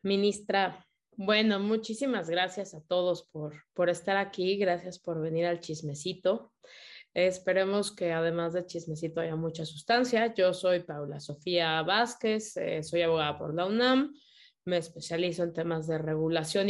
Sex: female